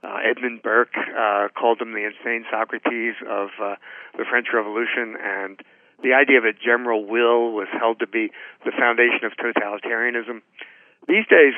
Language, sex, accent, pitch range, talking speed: English, male, American, 110-135 Hz, 160 wpm